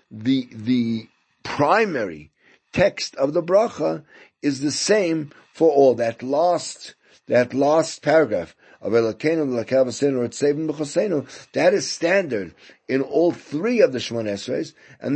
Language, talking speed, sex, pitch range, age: English, 130 wpm, male, 115-150 Hz, 50-69